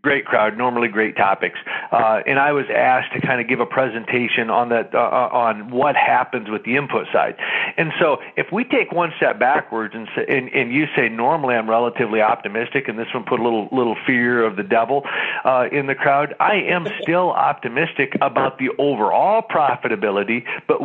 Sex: male